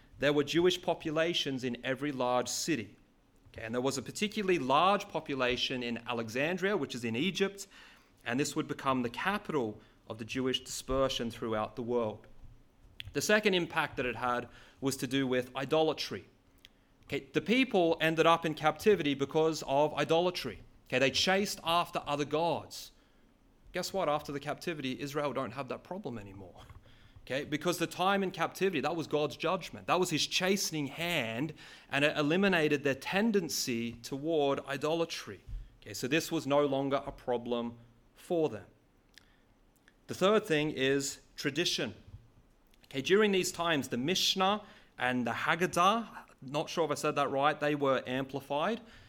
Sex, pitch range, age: male, 125-165 Hz, 30-49